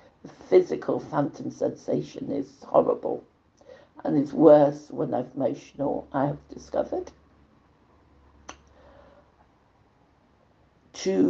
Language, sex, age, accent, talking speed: English, female, 60-79, British, 80 wpm